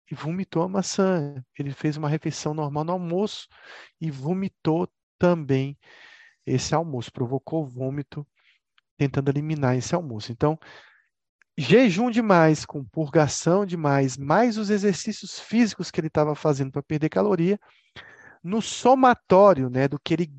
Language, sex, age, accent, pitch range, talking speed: Spanish, male, 40-59, Brazilian, 140-195 Hz, 130 wpm